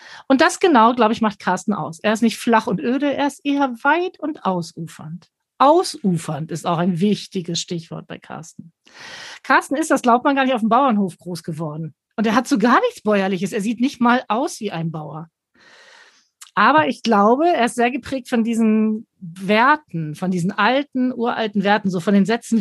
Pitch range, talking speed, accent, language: 180-240 Hz, 195 wpm, German, German